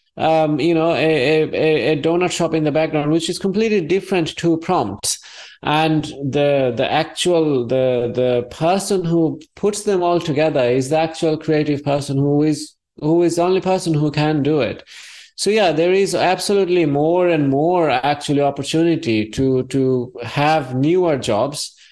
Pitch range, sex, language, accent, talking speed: 135-170 Hz, male, English, Indian, 165 wpm